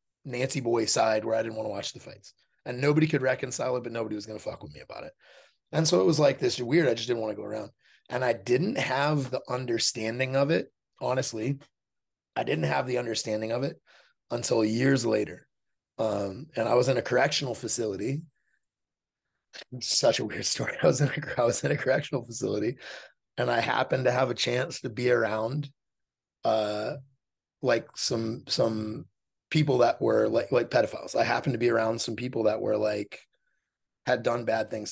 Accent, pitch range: American, 110-135 Hz